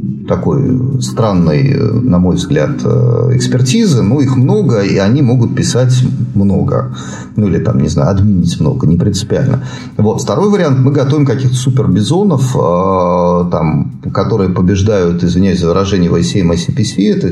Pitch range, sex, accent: 95-130 Hz, male, native